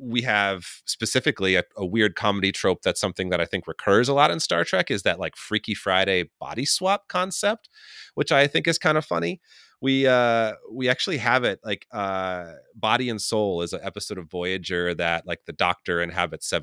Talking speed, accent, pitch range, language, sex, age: 205 wpm, American, 85-110 Hz, English, male, 30-49